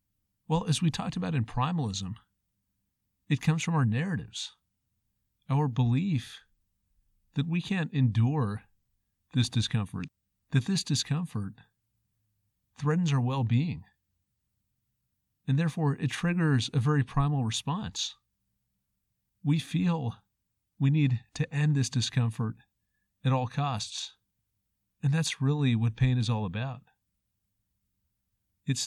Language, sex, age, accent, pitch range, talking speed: English, male, 40-59, American, 105-145 Hz, 110 wpm